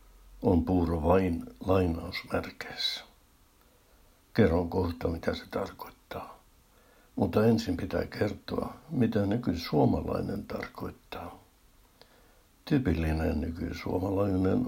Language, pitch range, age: Finnish, 85-100 Hz, 60-79